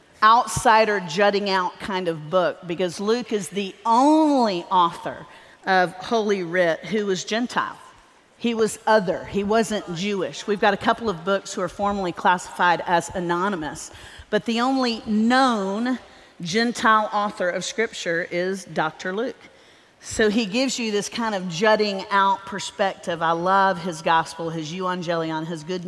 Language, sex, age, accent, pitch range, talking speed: English, female, 40-59, American, 175-220 Hz, 150 wpm